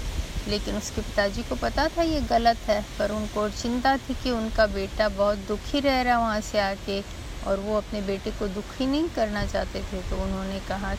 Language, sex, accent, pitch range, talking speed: Hindi, female, native, 200-260 Hz, 195 wpm